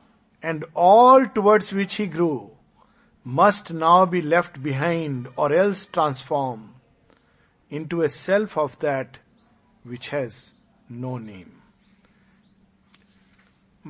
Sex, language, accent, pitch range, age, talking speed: male, Hindi, native, 130-175 Hz, 50-69, 100 wpm